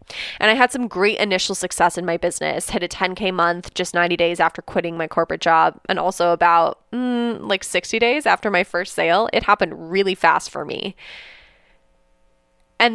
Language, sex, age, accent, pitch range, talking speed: English, female, 20-39, American, 170-220 Hz, 185 wpm